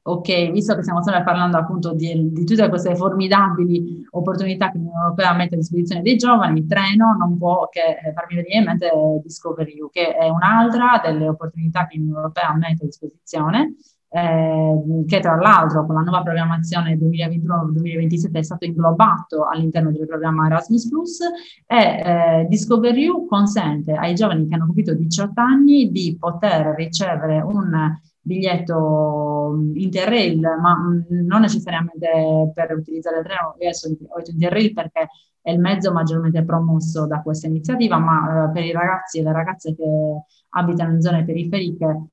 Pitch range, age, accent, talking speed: 160-195 Hz, 30-49, native, 155 wpm